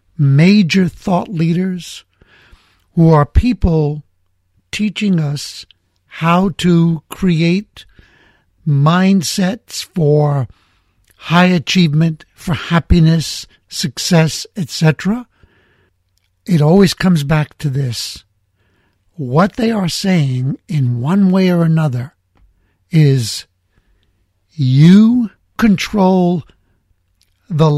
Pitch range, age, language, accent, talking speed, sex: 105-170 Hz, 60-79, German, American, 80 wpm, male